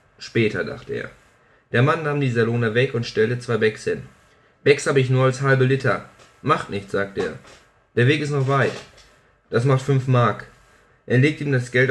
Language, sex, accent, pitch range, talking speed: German, male, German, 110-135 Hz, 195 wpm